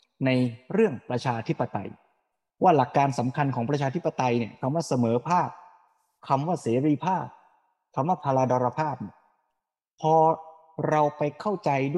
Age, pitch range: 20-39, 125-175 Hz